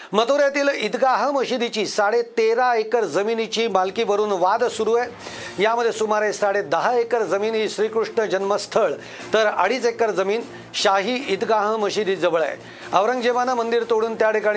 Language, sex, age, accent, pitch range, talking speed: Marathi, male, 40-59, native, 195-230 Hz, 125 wpm